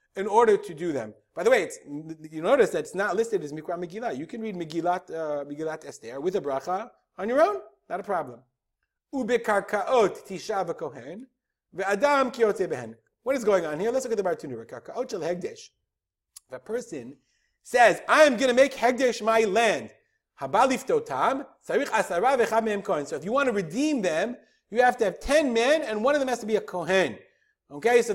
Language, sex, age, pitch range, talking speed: English, male, 30-49, 185-280 Hz, 170 wpm